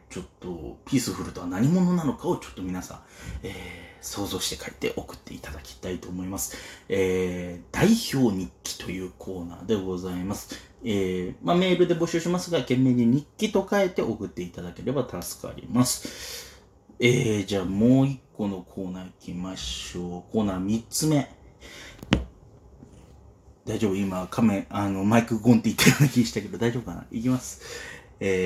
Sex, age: male, 30-49